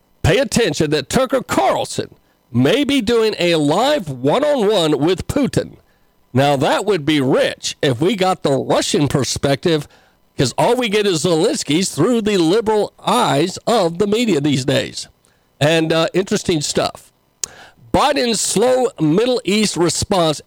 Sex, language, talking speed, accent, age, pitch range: male, English, 140 wpm, American, 50-69, 145-195 Hz